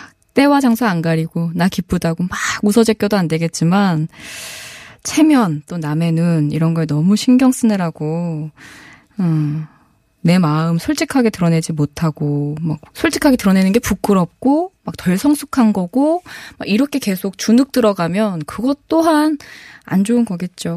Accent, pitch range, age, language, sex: native, 160-245 Hz, 20-39, Korean, female